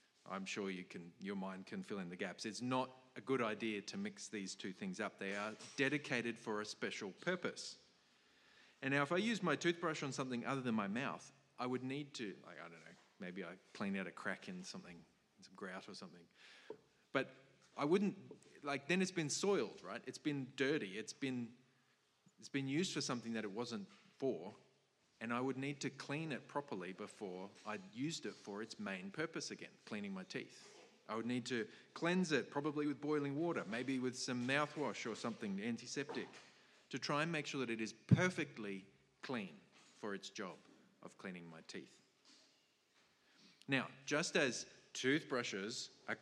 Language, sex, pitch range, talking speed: English, male, 110-155 Hz, 185 wpm